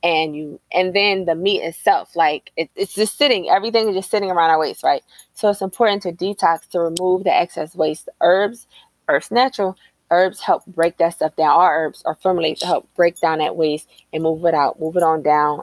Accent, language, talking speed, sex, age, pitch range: American, English, 220 wpm, female, 20-39, 155-185 Hz